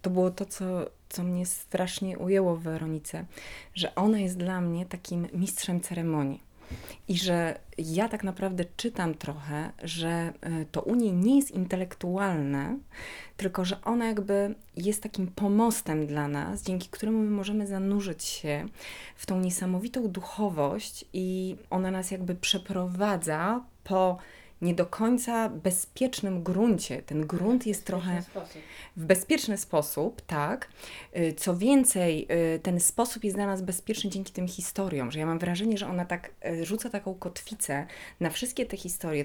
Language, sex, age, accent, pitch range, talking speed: Polish, female, 30-49, native, 165-200 Hz, 145 wpm